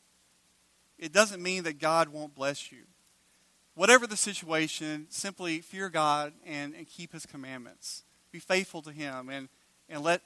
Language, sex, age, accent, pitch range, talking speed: English, male, 40-59, American, 150-185 Hz, 150 wpm